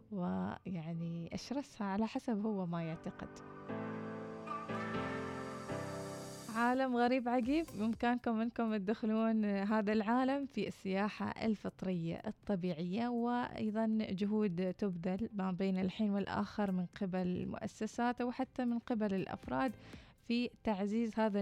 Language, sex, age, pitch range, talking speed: Arabic, female, 20-39, 190-235 Hz, 100 wpm